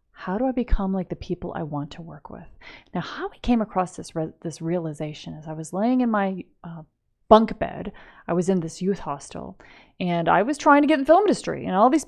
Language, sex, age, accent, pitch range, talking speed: English, female, 30-49, American, 165-220 Hz, 245 wpm